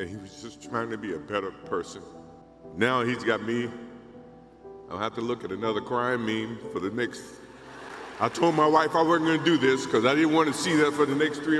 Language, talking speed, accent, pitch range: English, 240 wpm, American, 115-150 Hz